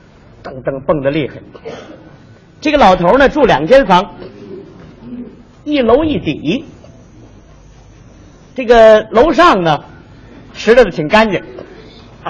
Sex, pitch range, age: male, 160-240 Hz, 50-69